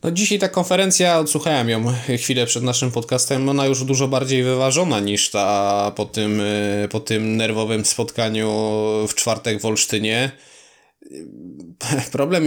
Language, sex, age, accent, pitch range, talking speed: Polish, male, 20-39, native, 120-135 Hz, 135 wpm